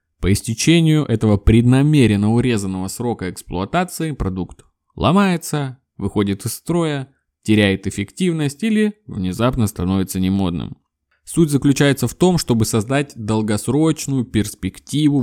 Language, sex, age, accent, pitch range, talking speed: Russian, male, 20-39, native, 95-140 Hz, 100 wpm